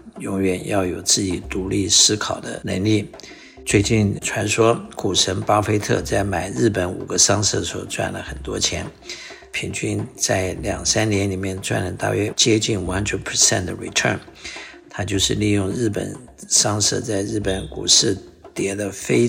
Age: 60-79